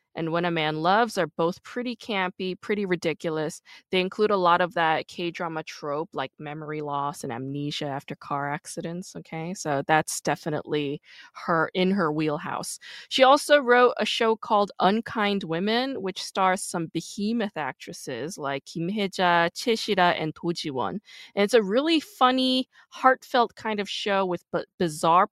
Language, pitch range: English, 160-220 Hz